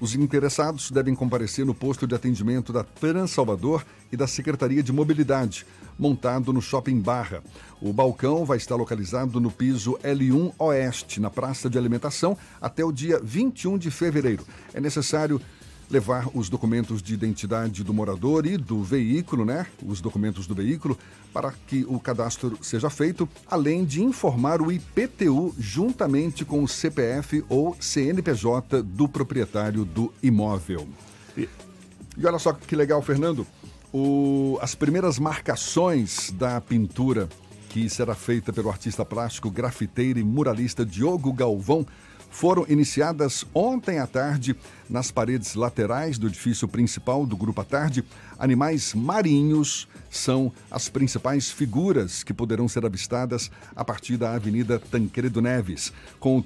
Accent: Brazilian